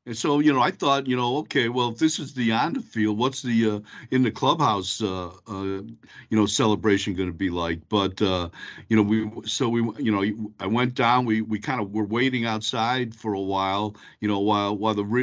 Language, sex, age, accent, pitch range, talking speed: English, male, 50-69, American, 105-125 Hz, 215 wpm